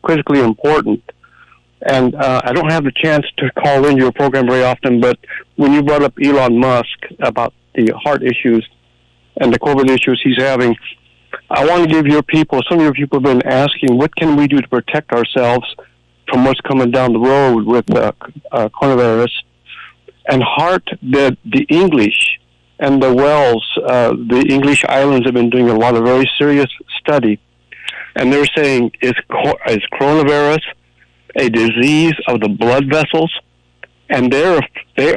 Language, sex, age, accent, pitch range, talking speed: English, male, 60-79, American, 120-145 Hz, 170 wpm